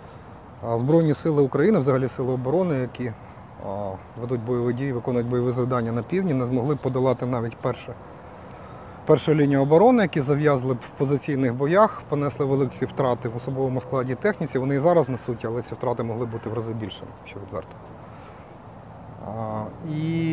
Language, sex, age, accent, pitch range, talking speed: Ukrainian, male, 30-49, native, 110-140 Hz, 155 wpm